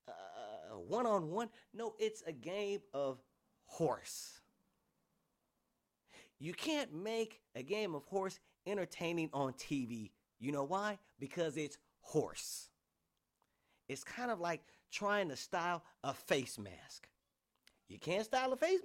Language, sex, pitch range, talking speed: English, male, 140-210 Hz, 125 wpm